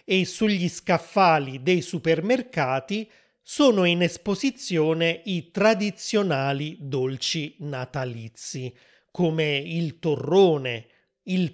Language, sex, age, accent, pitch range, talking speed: Italian, male, 30-49, native, 150-190 Hz, 85 wpm